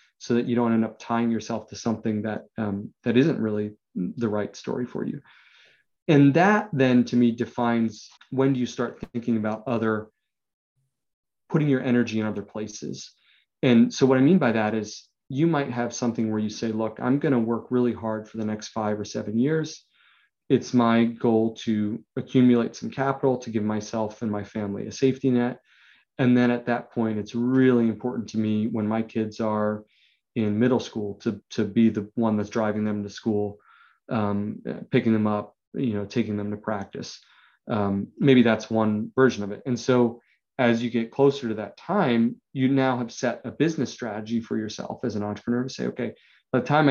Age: 30-49